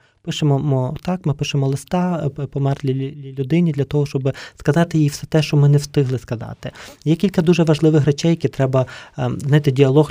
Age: 20-39